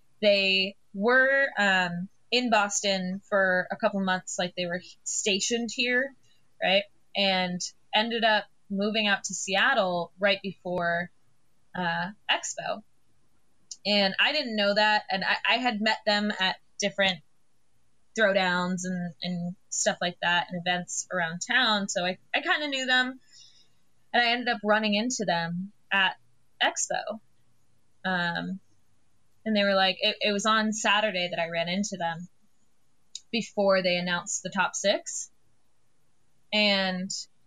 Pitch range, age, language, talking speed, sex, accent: 180-215 Hz, 20-39, English, 140 wpm, female, American